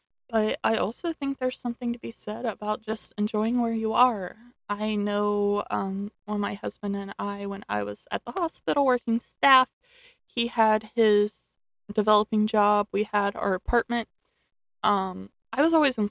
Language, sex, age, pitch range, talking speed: English, female, 20-39, 205-250 Hz, 170 wpm